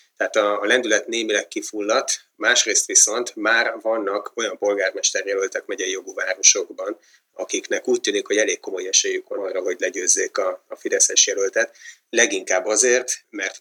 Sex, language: male, Hungarian